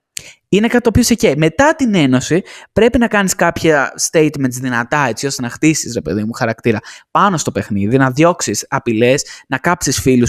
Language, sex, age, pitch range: Greek, male, 20-39, 130-205 Hz